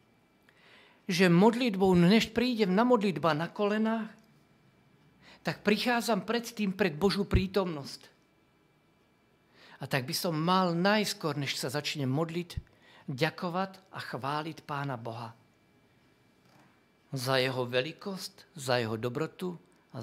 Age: 50-69